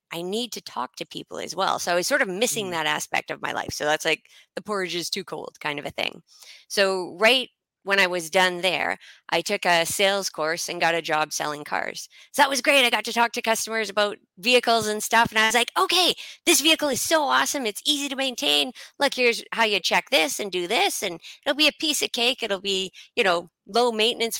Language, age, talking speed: English, 20-39, 245 wpm